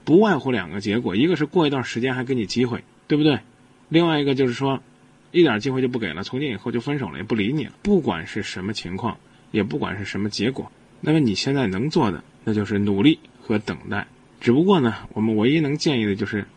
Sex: male